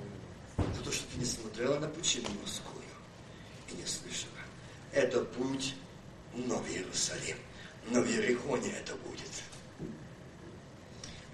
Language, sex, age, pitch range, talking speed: Russian, male, 50-69, 120-160 Hz, 100 wpm